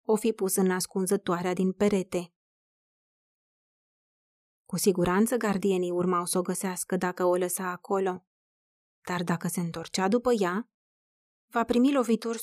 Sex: female